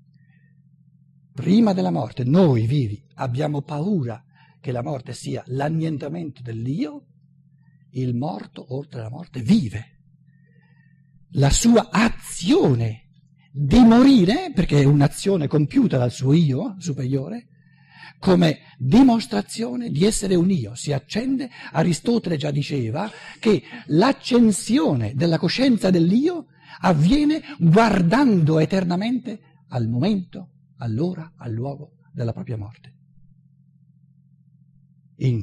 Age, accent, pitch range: 60-79, native, 135-175 Hz